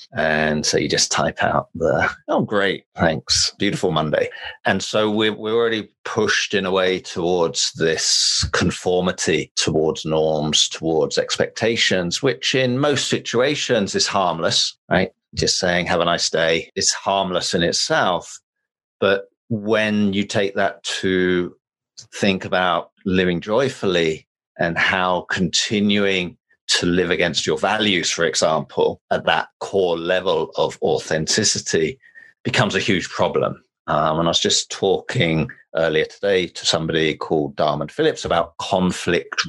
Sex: male